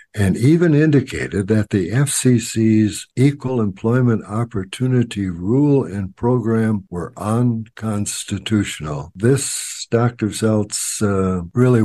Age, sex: 60-79, male